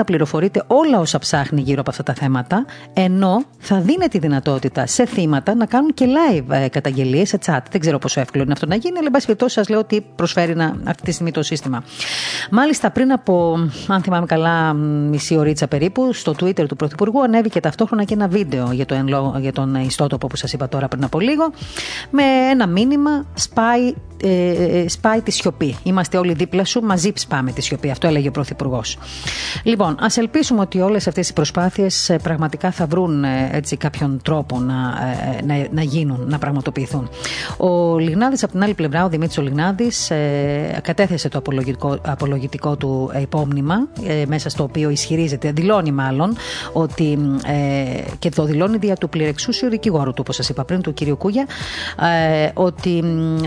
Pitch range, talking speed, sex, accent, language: 140-200 Hz, 170 wpm, female, native, Greek